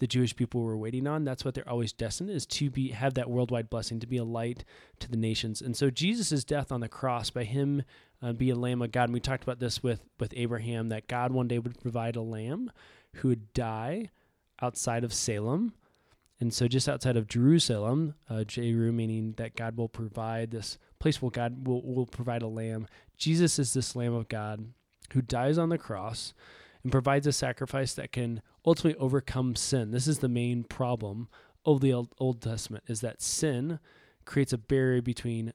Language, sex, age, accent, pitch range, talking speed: English, male, 20-39, American, 115-130 Hz, 205 wpm